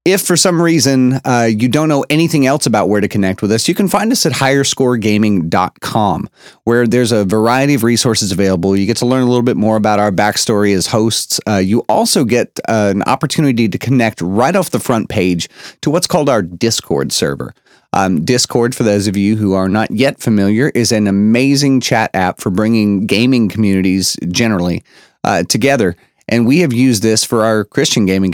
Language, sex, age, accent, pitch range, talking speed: English, male, 30-49, American, 105-135 Hz, 200 wpm